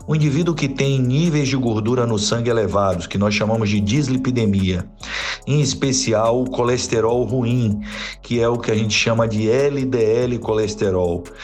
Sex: male